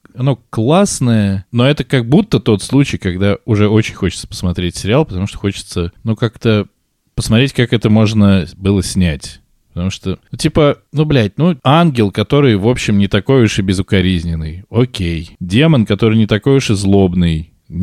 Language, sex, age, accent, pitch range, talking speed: Russian, male, 20-39, native, 95-135 Hz, 165 wpm